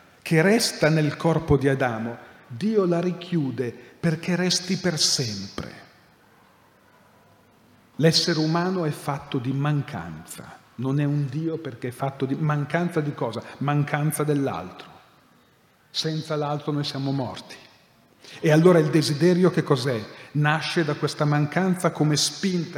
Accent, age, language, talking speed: native, 40-59, Italian, 130 wpm